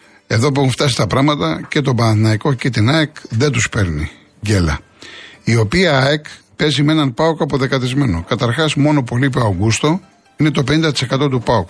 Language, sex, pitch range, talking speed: Greek, male, 105-150 Hz, 180 wpm